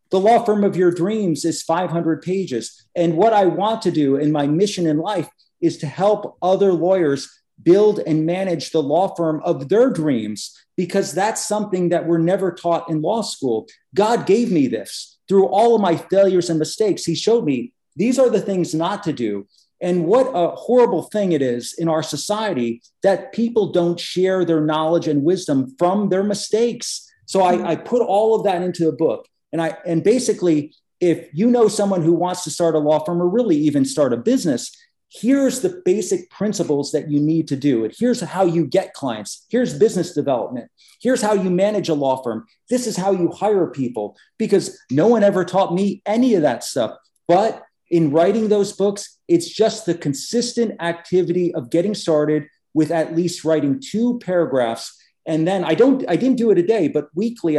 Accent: American